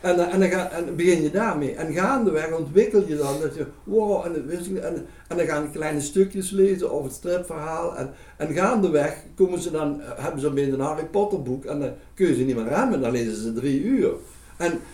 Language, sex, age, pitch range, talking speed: Dutch, male, 60-79, 135-190 Hz, 225 wpm